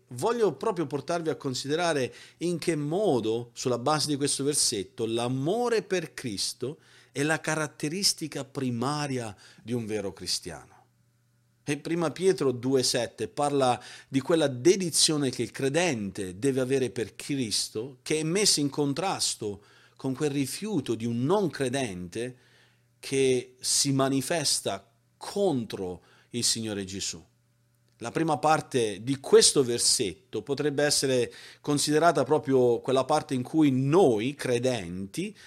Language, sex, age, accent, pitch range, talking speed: Italian, male, 40-59, native, 120-155 Hz, 125 wpm